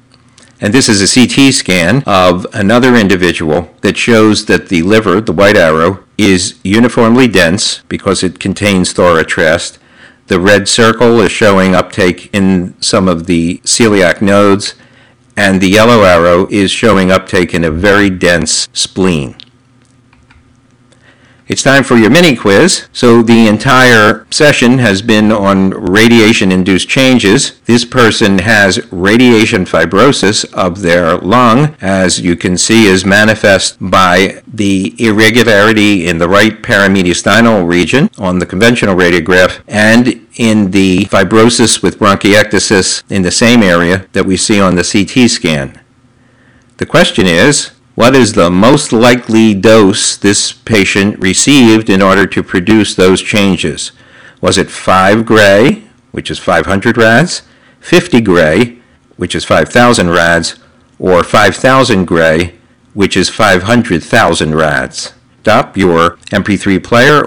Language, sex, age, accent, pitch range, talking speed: English, male, 50-69, American, 95-120 Hz, 130 wpm